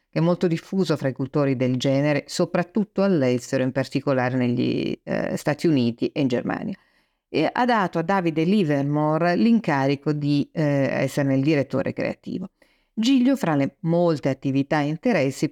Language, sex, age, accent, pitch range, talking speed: Italian, female, 50-69, native, 140-175 Hz, 150 wpm